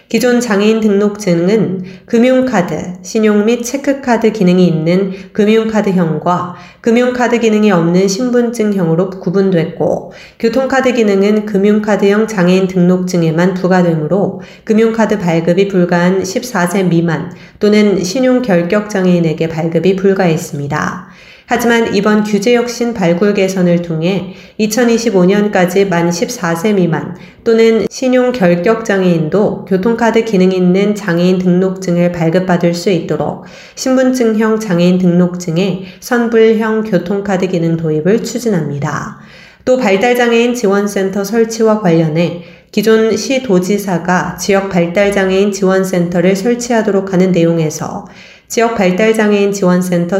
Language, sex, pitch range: Korean, female, 175-220 Hz